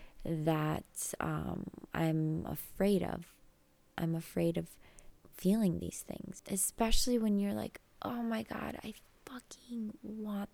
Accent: American